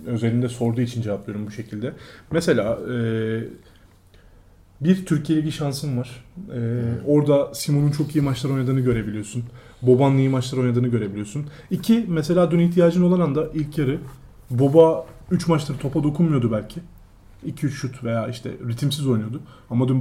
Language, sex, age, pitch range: Turkish, male, 30-49, 115-160 Hz